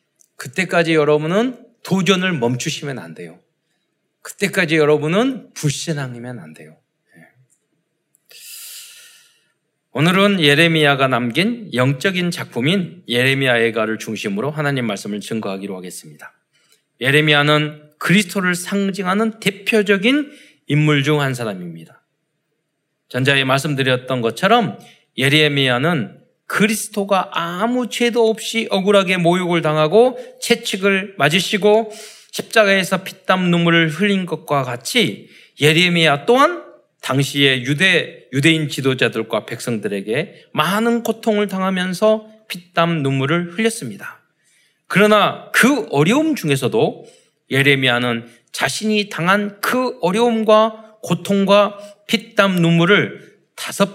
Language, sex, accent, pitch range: Korean, male, native, 145-210 Hz